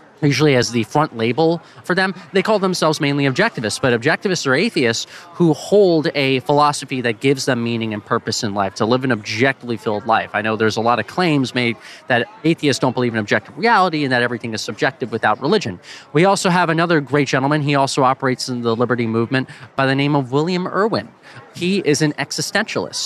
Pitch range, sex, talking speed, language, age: 120-160 Hz, male, 205 wpm, English, 20-39